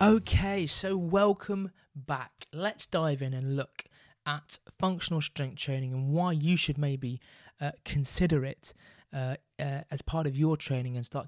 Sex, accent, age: male, British, 20-39